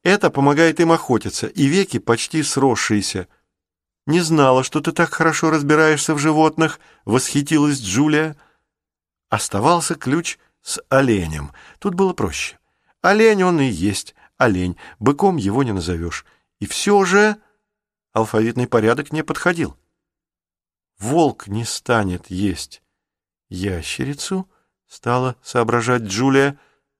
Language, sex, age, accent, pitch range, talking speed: Russian, male, 40-59, native, 110-160 Hz, 110 wpm